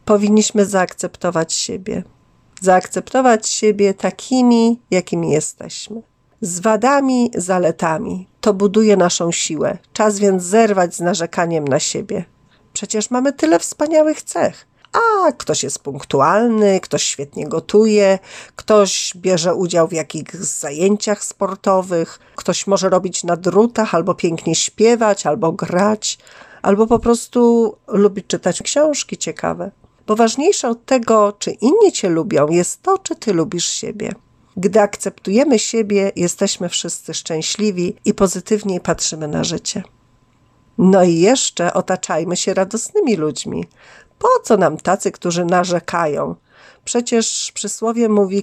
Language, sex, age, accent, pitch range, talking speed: Polish, female, 40-59, native, 175-225 Hz, 120 wpm